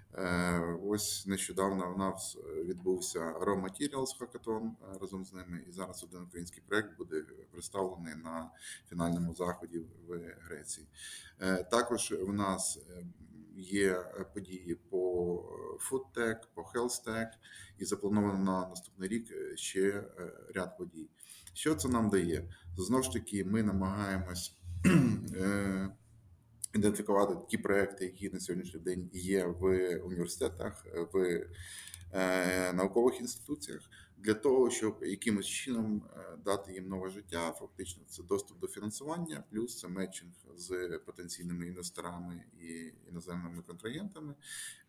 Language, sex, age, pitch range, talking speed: Ukrainian, male, 30-49, 90-110 Hz, 115 wpm